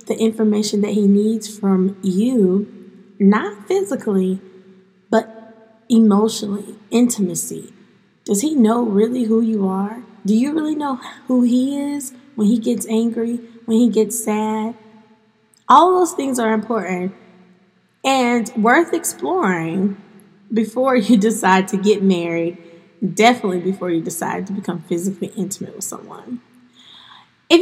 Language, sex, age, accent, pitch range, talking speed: English, female, 20-39, American, 195-235 Hz, 130 wpm